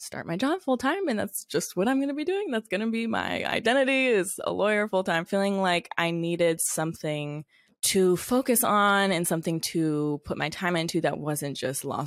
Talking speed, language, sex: 210 wpm, English, female